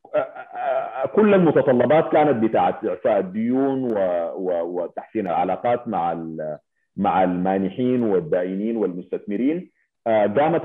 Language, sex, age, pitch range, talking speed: Arabic, male, 40-59, 95-150 Hz, 80 wpm